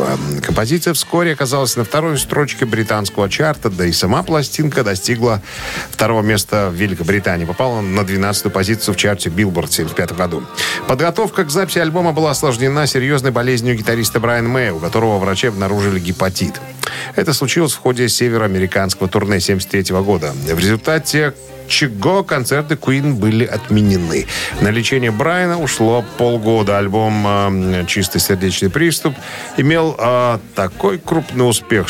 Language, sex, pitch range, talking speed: Russian, male, 100-135 Hz, 135 wpm